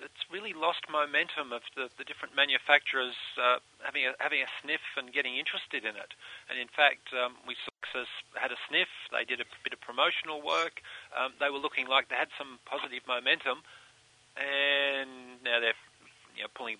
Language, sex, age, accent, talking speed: English, male, 40-59, Australian, 175 wpm